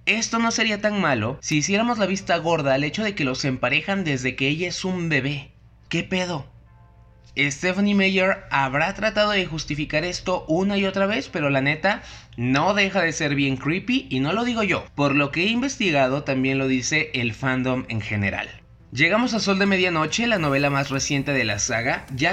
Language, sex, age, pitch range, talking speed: Spanish, male, 20-39, 130-185 Hz, 200 wpm